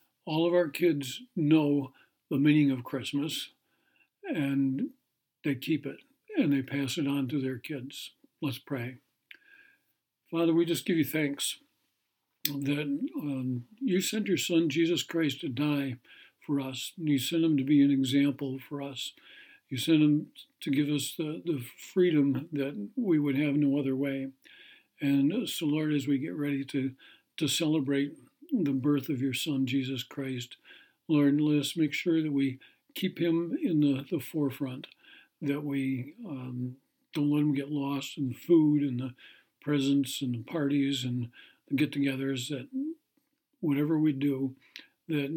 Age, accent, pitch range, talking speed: 60-79, American, 135-160 Hz, 160 wpm